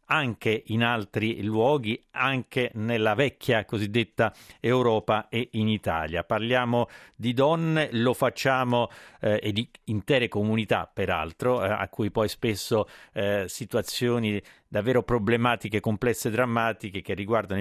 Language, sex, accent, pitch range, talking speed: Italian, male, native, 100-120 Hz, 125 wpm